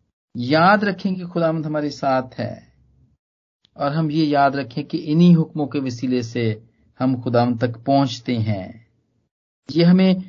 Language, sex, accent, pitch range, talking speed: Hindi, male, native, 110-145 Hz, 145 wpm